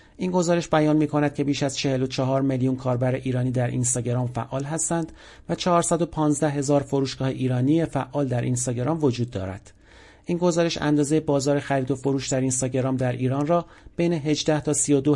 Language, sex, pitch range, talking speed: Persian, male, 130-155 Hz, 160 wpm